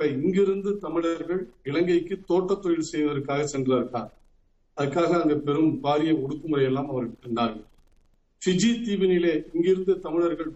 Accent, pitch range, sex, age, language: native, 150-225 Hz, male, 50-69, Tamil